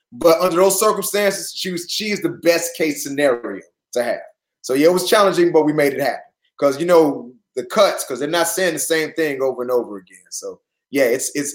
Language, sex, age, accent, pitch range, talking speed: English, male, 20-39, American, 145-190 Hz, 230 wpm